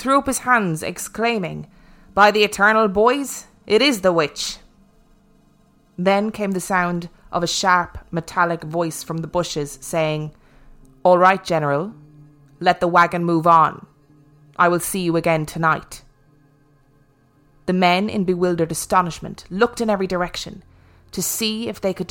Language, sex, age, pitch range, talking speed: English, female, 20-39, 155-200 Hz, 145 wpm